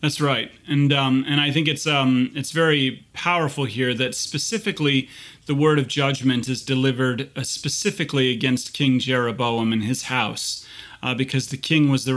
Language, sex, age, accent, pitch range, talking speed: English, male, 30-49, American, 130-150 Hz, 170 wpm